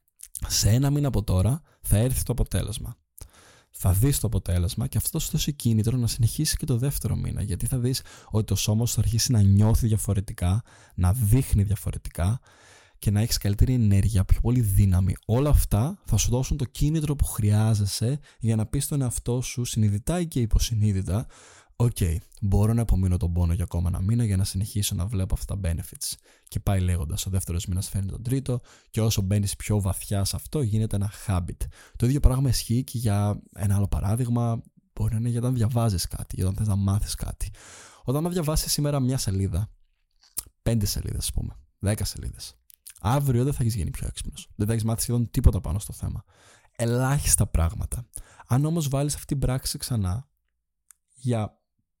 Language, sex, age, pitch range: Greek, male, 20-39, 95-120 Hz